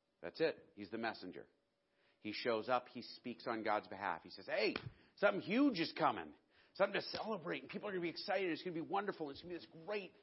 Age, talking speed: 40-59, 235 wpm